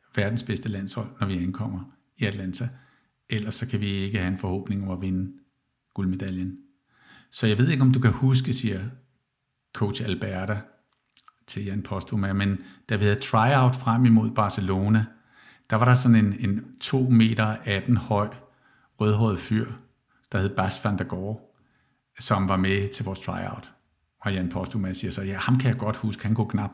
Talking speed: 175 wpm